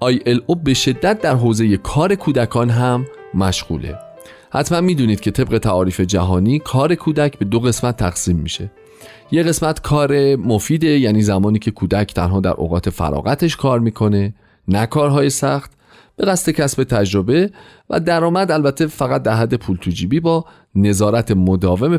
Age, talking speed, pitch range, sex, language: 40-59, 155 wpm, 95-150 Hz, male, Persian